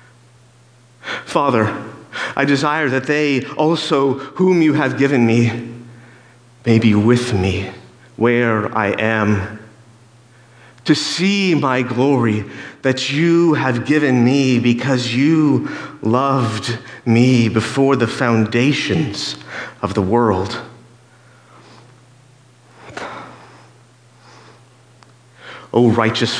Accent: American